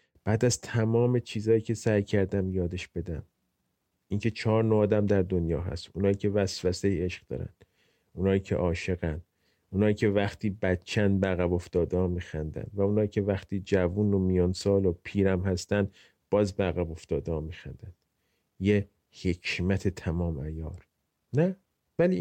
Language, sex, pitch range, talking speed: Persian, male, 90-115 Hz, 145 wpm